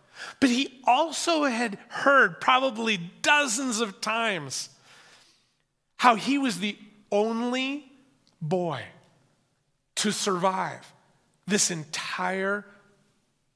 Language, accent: English, American